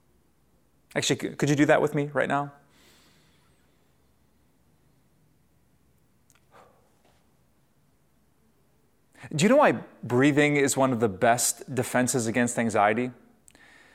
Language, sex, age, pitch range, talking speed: English, male, 30-49, 125-160 Hz, 95 wpm